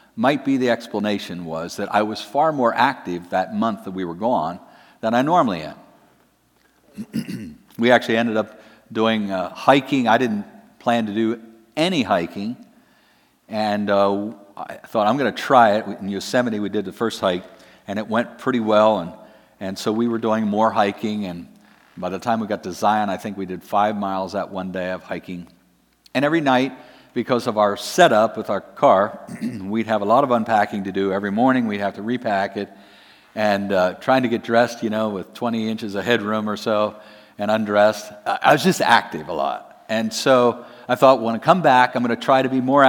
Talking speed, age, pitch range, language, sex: 205 wpm, 50-69, 100-120 Hz, English, male